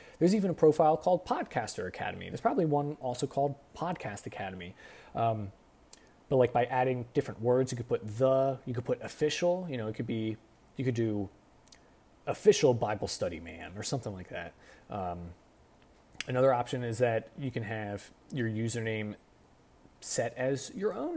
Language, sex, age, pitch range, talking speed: English, male, 30-49, 110-150 Hz, 165 wpm